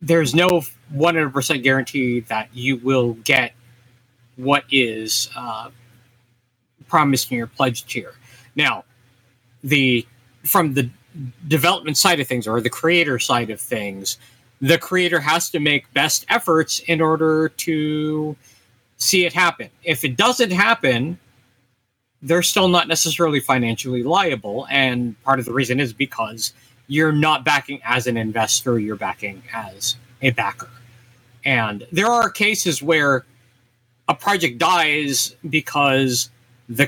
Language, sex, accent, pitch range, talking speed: English, male, American, 120-155 Hz, 130 wpm